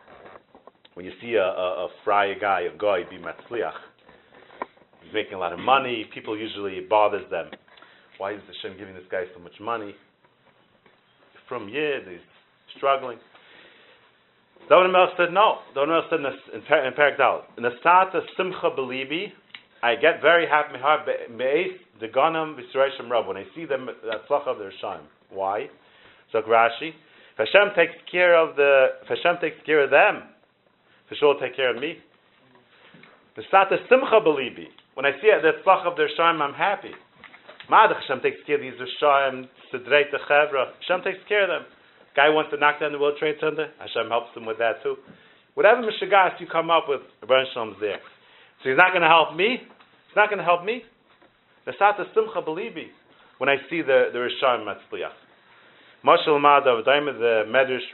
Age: 40-59